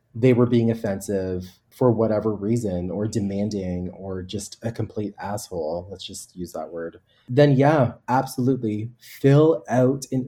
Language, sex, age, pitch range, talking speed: English, male, 30-49, 105-130 Hz, 145 wpm